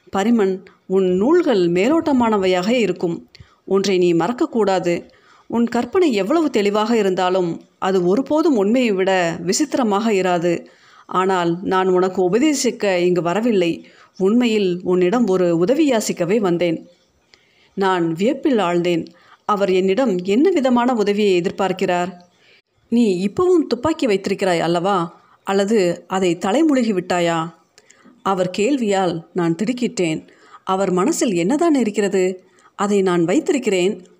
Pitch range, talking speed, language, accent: 180-230 Hz, 105 wpm, Tamil, native